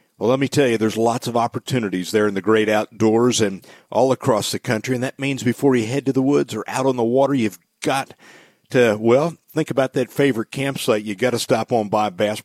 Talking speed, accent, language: 235 wpm, American, English